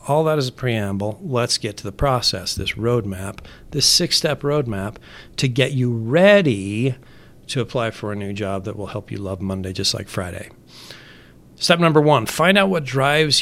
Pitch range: 110-135 Hz